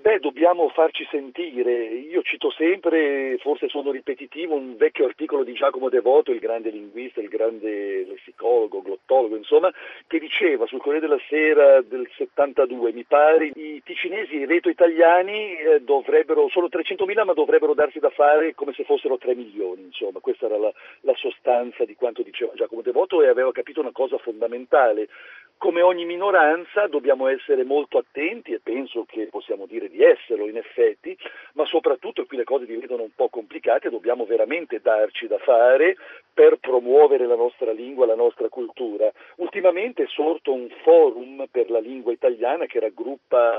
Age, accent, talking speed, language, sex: 50-69, native, 165 wpm, Italian, male